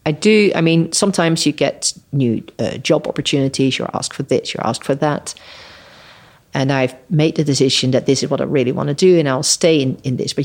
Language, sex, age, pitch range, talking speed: English, female, 40-59, 135-165 Hz, 230 wpm